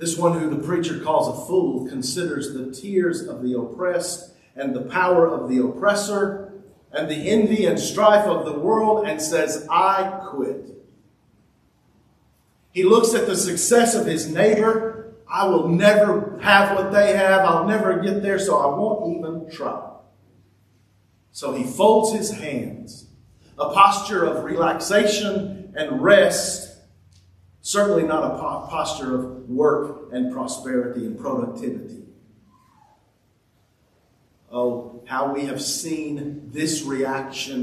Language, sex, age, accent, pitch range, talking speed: English, male, 40-59, American, 130-195 Hz, 135 wpm